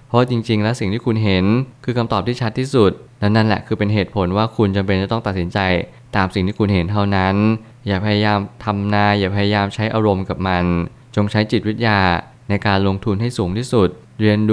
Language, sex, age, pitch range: Thai, male, 20-39, 95-115 Hz